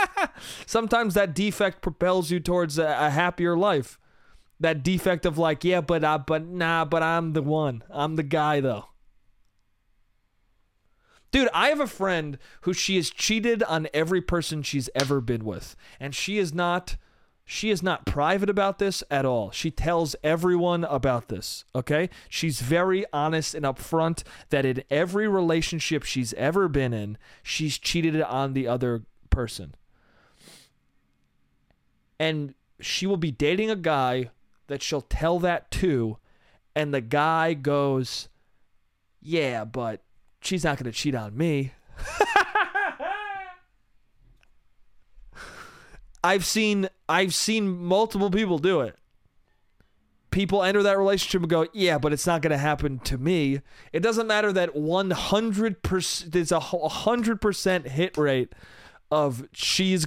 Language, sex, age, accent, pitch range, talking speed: English, male, 30-49, American, 135-185 Hz, 140 wpm